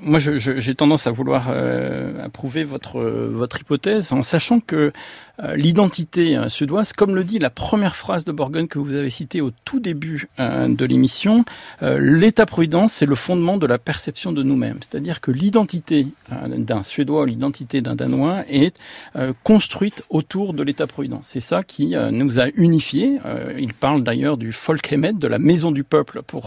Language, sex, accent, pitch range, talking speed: French, male, French, 135-180 Hz, 185 wpm